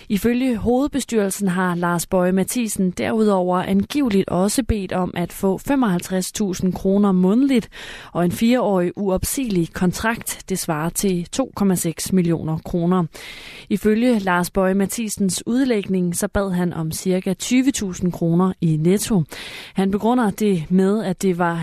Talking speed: 135 wpm